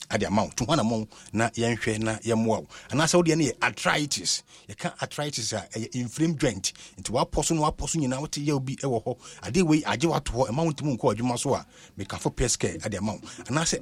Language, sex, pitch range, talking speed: English, male, 115-165 Hz, 150 wpm